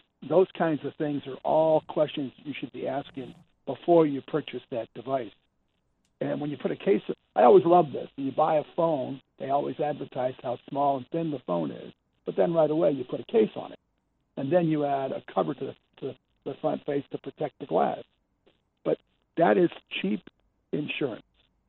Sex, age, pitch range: male, 60-79, 130-160 Hz